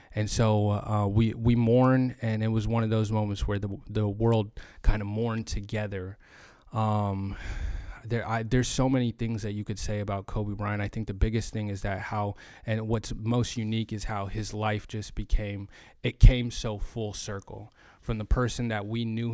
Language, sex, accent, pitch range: English, male, American, 100-115 Hz